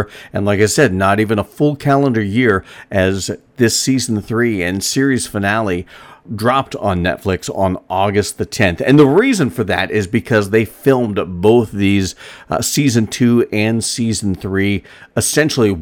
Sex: male